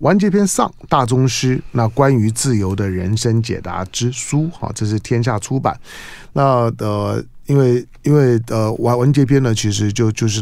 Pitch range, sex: 110-145 Hz, male